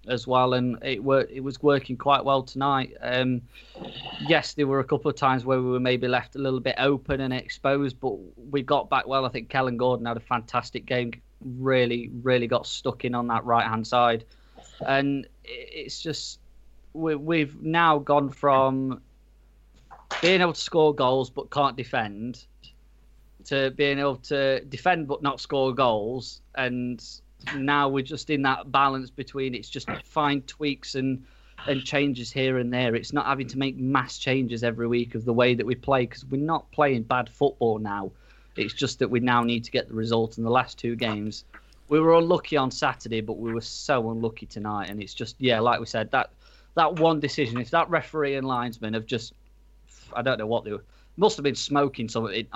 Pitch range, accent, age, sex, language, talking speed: 115-140 Hz, British, 20-39, male, English, 195 wpm